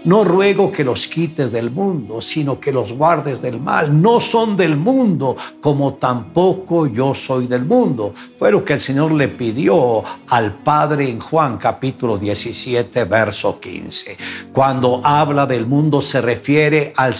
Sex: male